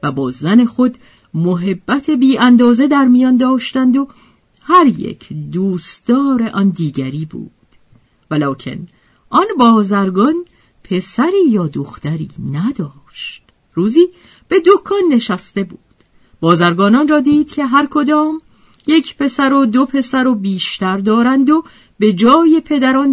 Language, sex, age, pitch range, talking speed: Persian, female, 50-69, 170-270 Hz, 120 wpm